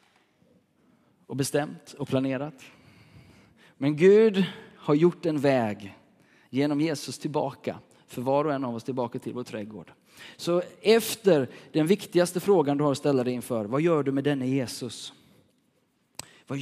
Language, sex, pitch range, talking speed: Swedish, male, 135-160 Hz, 150 wpm